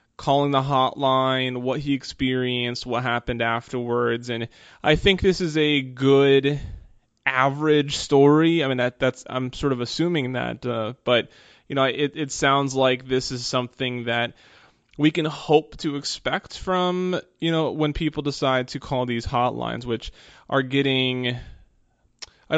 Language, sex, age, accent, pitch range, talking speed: English, male, 20-39, American, 120-140 Hz, 150 wpm